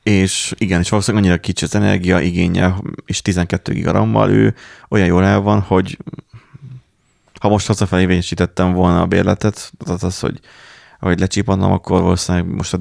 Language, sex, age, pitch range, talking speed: Hungarian, male, 30-49, 90-115 Hz, 150 wpm